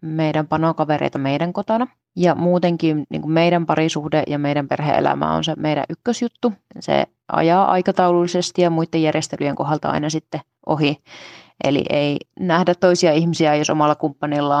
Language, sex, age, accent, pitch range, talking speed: Finnish, female, 20-39, native, 155-185 Hz, 140 wpm